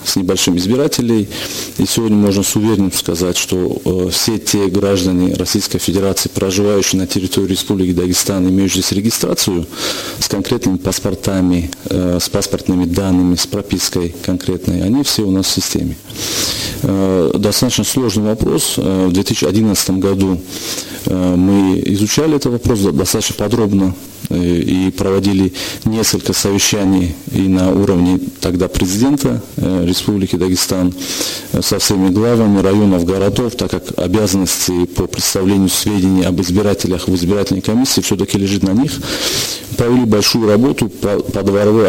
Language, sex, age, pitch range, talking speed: Russian, male, 40-59, 95-105 Hz, 125 wpm